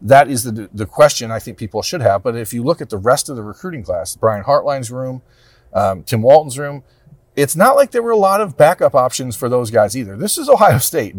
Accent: American